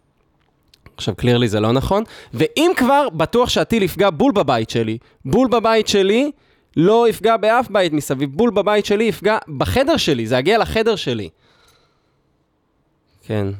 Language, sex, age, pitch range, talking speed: Hebrew, male, 20-39, 120-180 Hz, 140 wpm